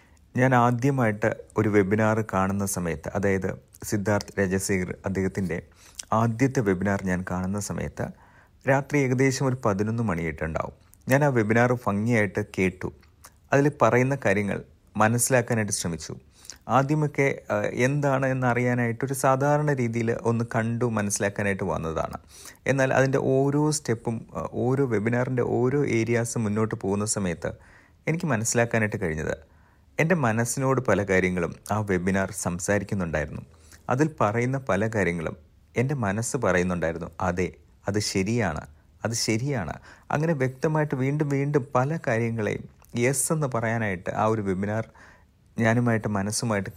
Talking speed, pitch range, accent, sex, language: 110 wpm, 95-125 Hz, native, male, Malayalam